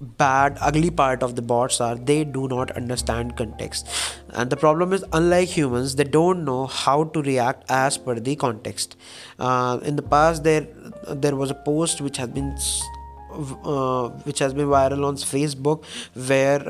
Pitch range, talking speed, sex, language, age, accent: 125-150 Hz, 175 wpm, male, English, 20-39, Indian